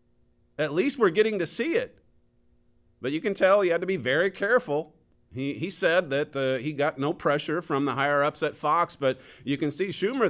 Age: 40-59